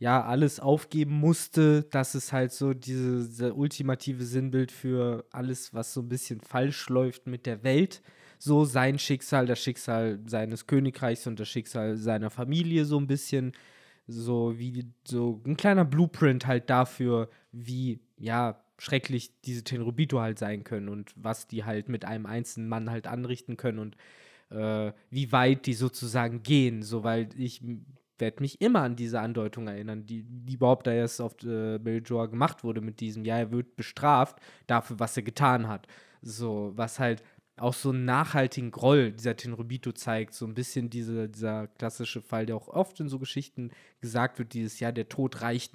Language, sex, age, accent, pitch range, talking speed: German, male, 20-39, German, 110-130 Hz, 170 wpm